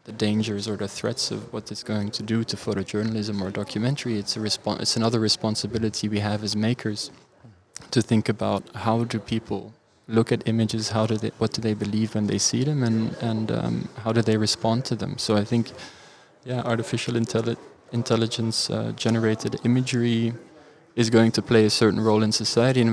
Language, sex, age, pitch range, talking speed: English, male, 20-39, 105-115 Hz, 190 wpm